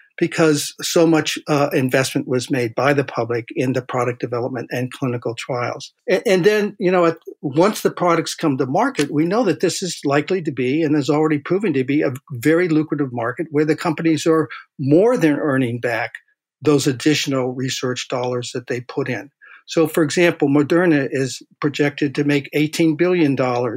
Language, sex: English, male